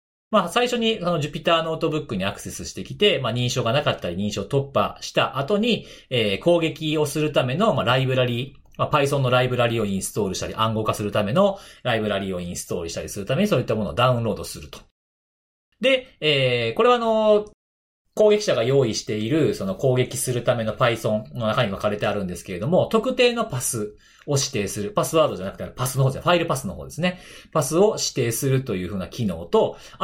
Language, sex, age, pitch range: Japanese, male, 40-59, 110-185 Hz